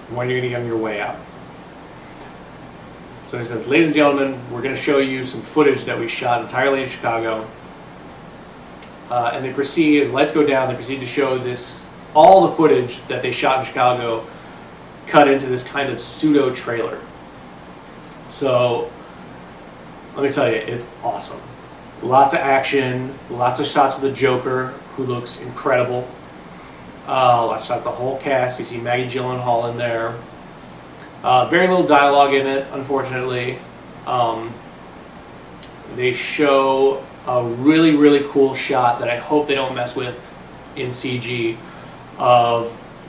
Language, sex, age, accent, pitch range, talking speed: English, male, 30-49, American, 115-135 Hz, 155 wpm